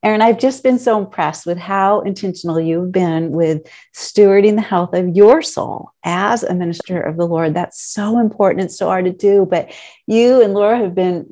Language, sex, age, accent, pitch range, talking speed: English, female, 50-69, American, 175-205 Hz, 200 wpm